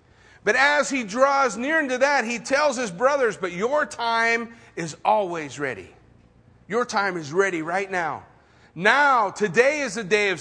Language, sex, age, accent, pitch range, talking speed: English, male, 40-59, American, 215-265 Hz, 165 wpm